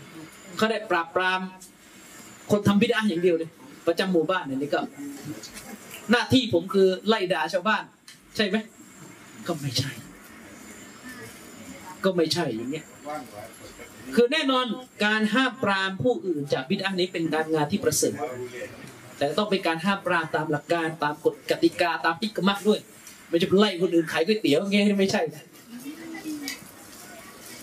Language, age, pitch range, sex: Thai, 30-49, 180-245 Hz, male